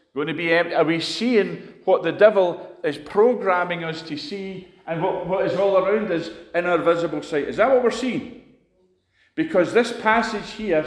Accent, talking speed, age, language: British, 190 wpm, 40-59, English